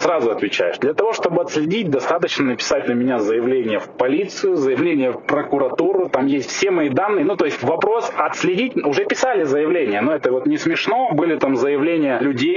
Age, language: 20-39, Russian